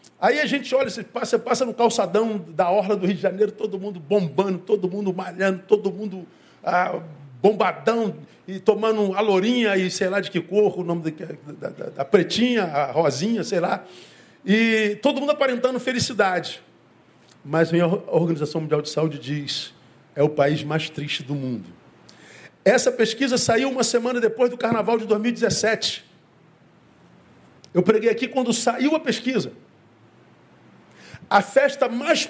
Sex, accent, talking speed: male, Brazilian, 160 wpm